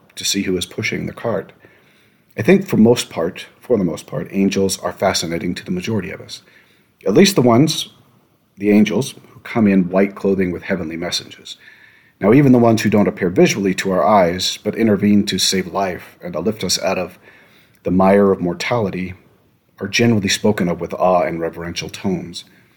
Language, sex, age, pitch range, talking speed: English, male, 40-59, 90-120 Hz, 190 wpm